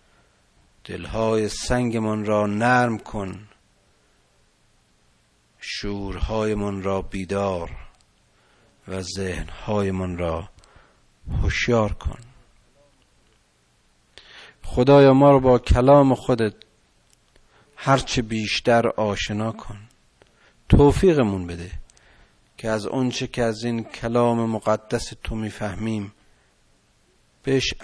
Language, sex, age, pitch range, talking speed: Persian, male, 50-69, 95-125 Hz, 80 wpm